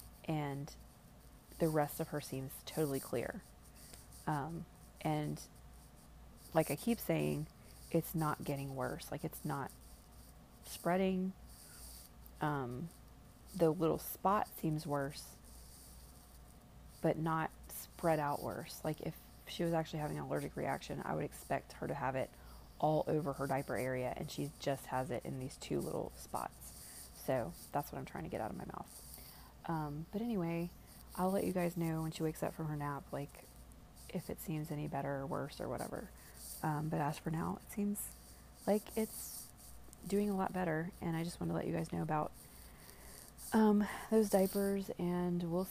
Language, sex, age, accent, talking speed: English, female, 30-49, American, 170 wpm